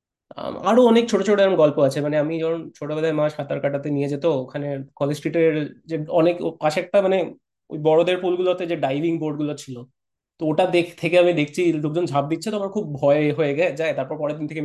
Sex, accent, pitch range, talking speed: male, native, 145-180 Hz, 160 wpm